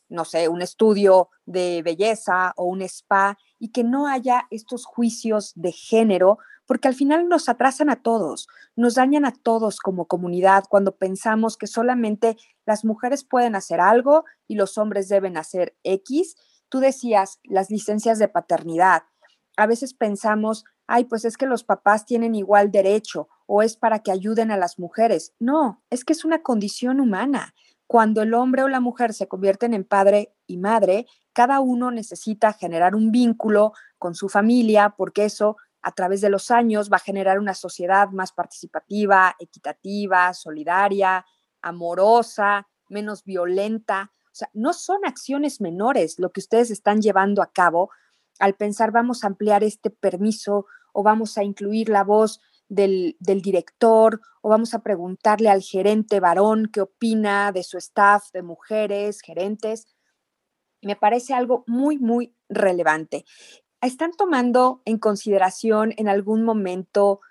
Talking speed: 155 wpm